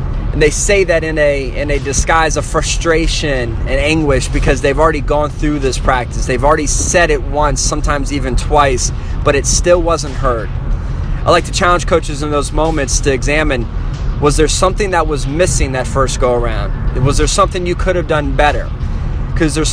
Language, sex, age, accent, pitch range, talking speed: English, male, 20-39, American, 130-160 Hz, 190 wpm